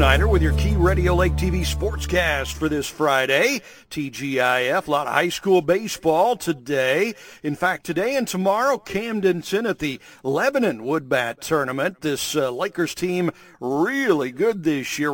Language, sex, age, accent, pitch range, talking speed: English, male, 50-69, American, 140-185 Hz, 150 wpm